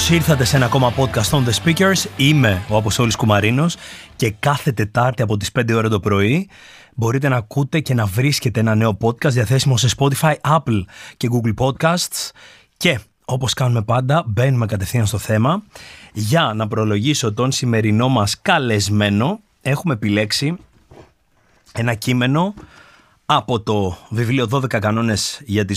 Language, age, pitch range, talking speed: Greek, 30-49, 110-150 Hz, 145 wpm